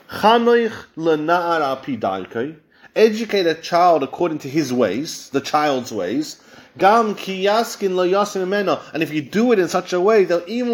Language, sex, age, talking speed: English, male, 30-49, 115 wpm